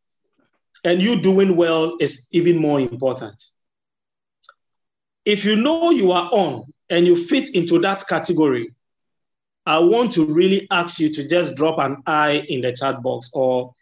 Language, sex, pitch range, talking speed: English, male, 125-170 Hz, 155 wpm